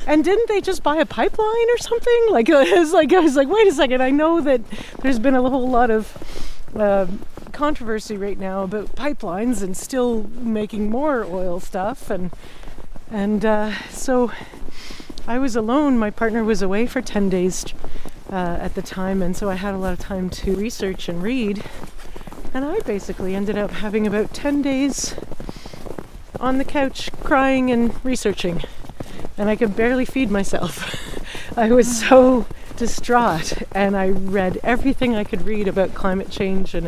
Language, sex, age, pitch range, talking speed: English, female, 40-59, 190-255 Hz, 170 wpm